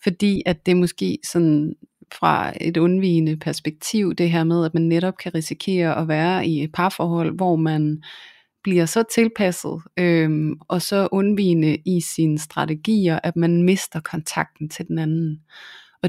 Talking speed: 155 wpm